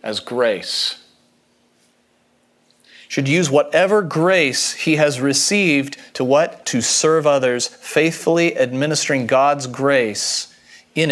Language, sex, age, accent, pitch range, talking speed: English, male, 40-59, American, 135-180 Hz, 105 wpm